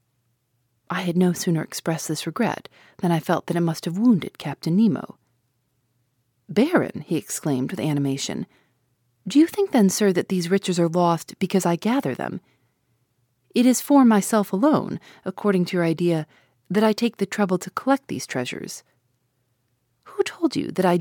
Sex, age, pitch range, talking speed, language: female, 40-59, 140-215 Hz, 170 wpm, English